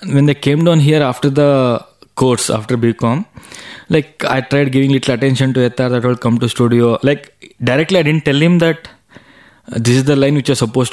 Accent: Indian